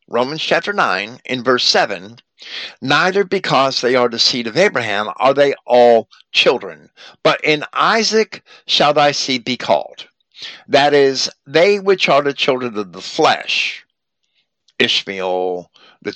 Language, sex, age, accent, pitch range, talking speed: English, male, 60-79, American, 125-185 Hz, 140 wpm